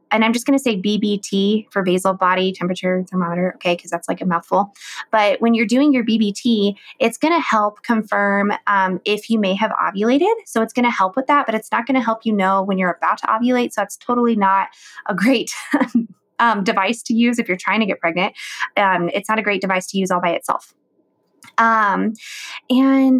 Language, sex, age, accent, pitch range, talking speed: English, female, 20-39, American, 195-235 Hz, 215 wpm